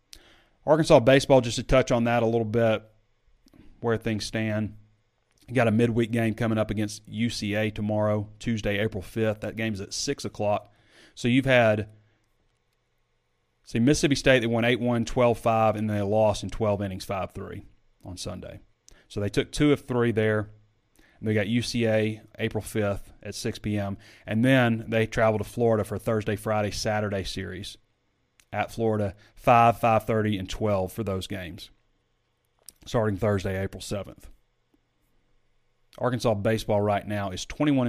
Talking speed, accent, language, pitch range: 155 wpm, American, English, 100-115 Hz